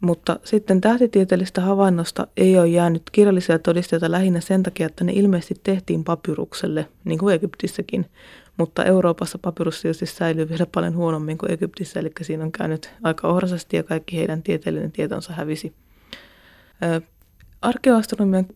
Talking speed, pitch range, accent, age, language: 140 wpm, 165-190 Hz, native, 20-39, Finnish